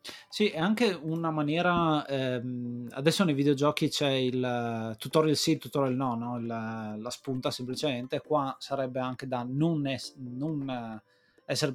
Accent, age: native, 20-39